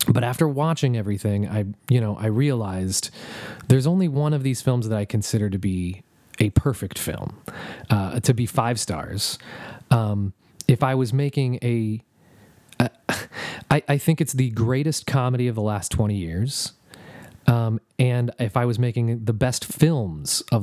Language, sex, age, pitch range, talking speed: English, male, 30-49, 105-130 Hz, 165 wpm